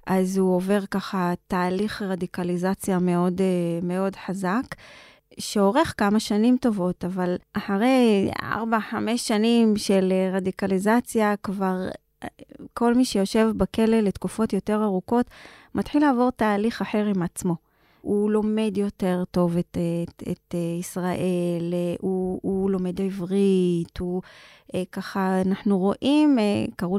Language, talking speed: Hebrew, 110 wpm